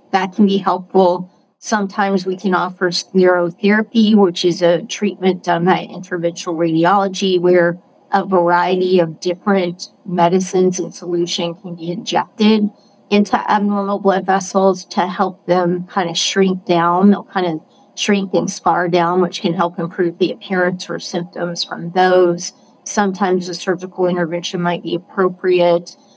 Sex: female